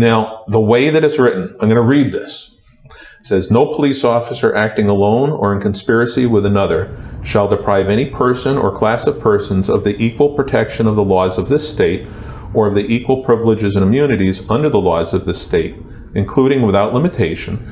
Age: 50-69